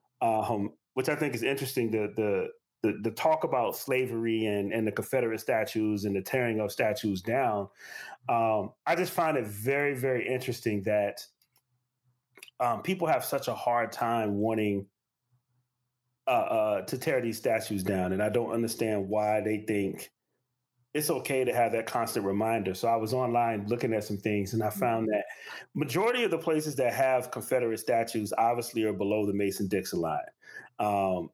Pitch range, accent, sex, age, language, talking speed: 110-155 Hz, American, male, 30-49, English, 170 wpm